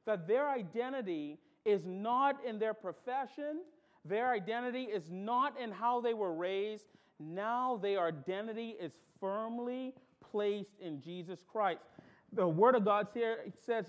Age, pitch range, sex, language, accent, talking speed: 40-59, 200-255 Hz, male, English, American, 135 wpm